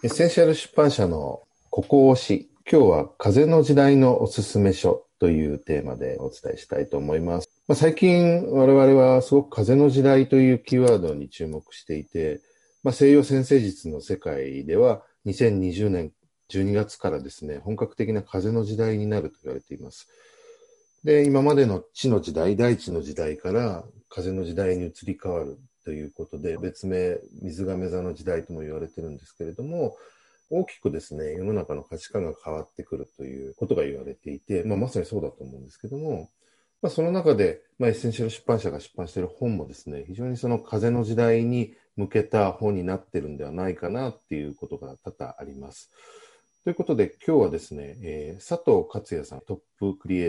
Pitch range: 85-135 Hz